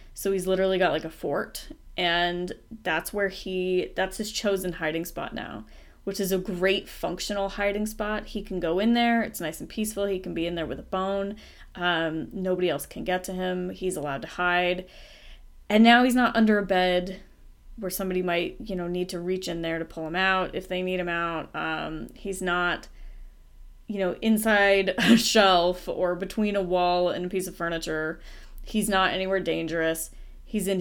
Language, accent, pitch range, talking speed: English, American, 175-205 Hz, 195 wpm